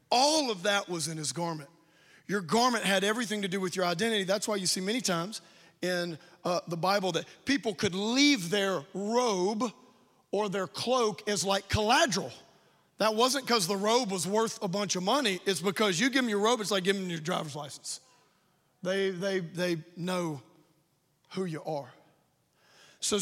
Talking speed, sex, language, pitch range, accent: 185 wpm, male, English, 150-195 Hz, American